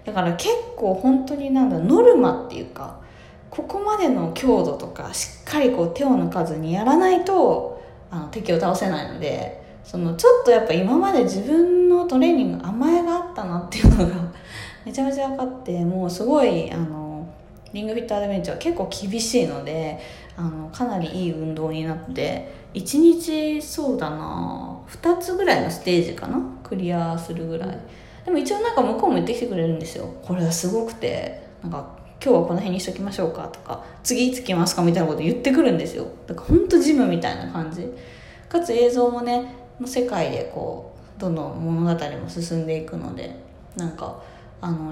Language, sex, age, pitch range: Japanese, female, 20-39, 165-275 Hz